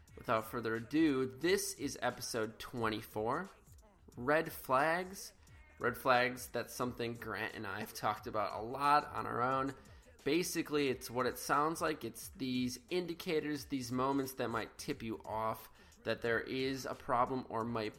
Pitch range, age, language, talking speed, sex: 110-140 Hz, 20-39, English, 155 wpm, male